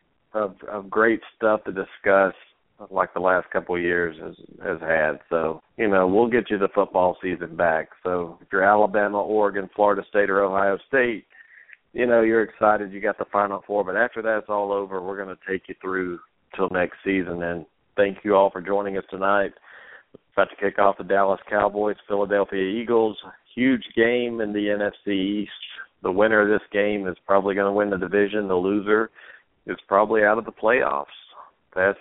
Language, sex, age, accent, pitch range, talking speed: English, male, 50-69, American, 95-105 Hz, 190 wpm